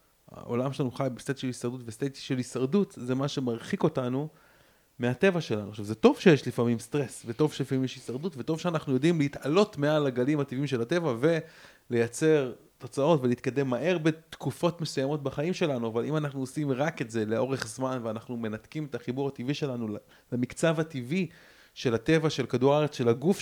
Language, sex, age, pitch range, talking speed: Hebrew, male, 30-49, 115-145 Hz, 170 wpm